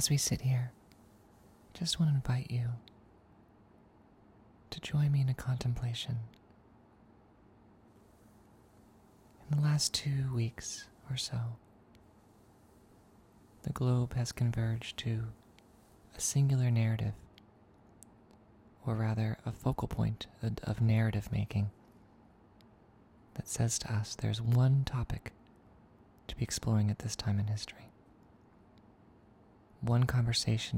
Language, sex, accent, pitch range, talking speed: English, male, American, 105-120 Hz, 110 wpm